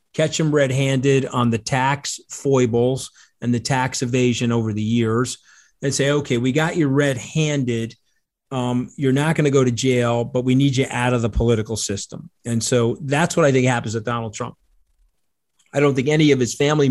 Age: 40-59